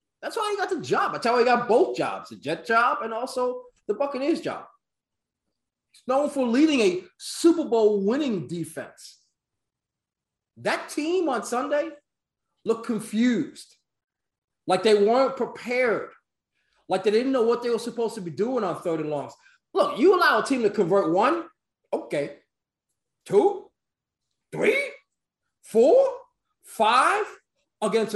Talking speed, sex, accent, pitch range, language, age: 140 wpm, male, American, 185-270 Hz, English, 30-49